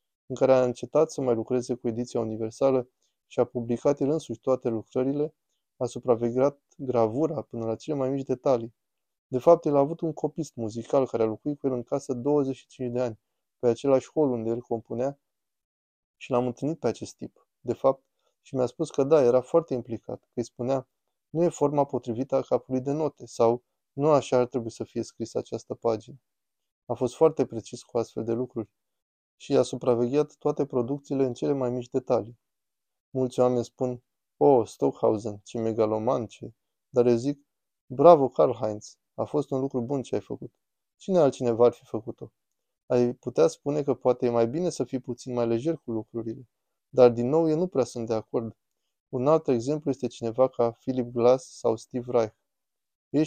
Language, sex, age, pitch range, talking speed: Romanian, male, 20-39, 115-140 Hz, 190 wpm